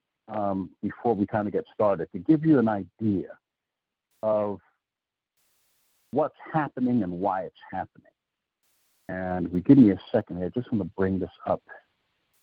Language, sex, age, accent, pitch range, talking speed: English, male, 60-79, American, 100-135 Hz, 160 wpm